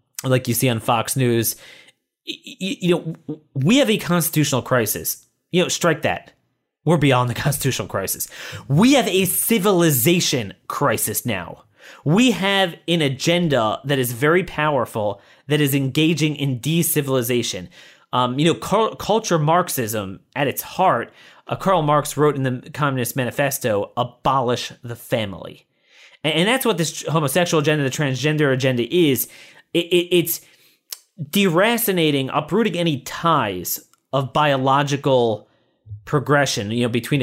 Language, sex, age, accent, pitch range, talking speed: English, male, 30-49, American, 125-165 Hz, 125 wpm